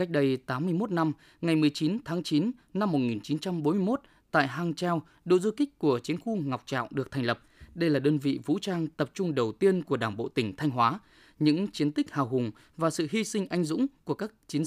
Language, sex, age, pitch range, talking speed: Vietnamese, male, 20-39, 140-195 Hz, 220 wpm